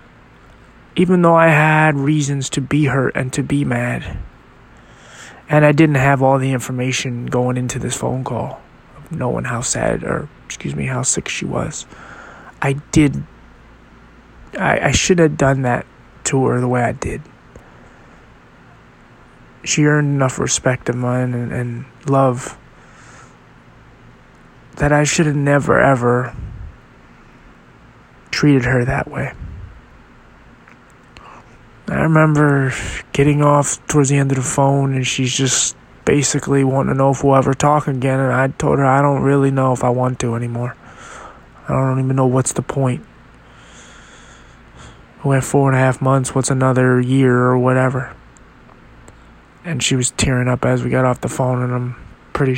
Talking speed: 155 wpm